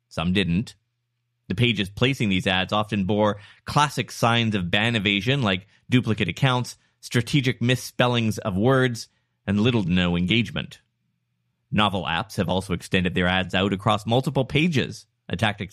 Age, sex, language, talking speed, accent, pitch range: 30-49, male, English, 150 wpm, American, 100-140 Hz